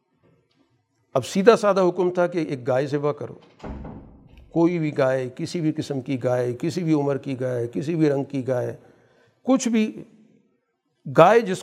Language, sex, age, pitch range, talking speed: Urdu, male, 50-69, 135-175 Hz, 165 wpm